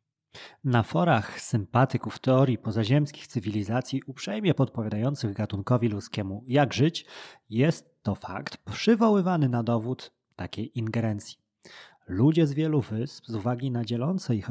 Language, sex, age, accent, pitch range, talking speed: Polish, male, 30-49, native, 110-145 Hz, 120 wpm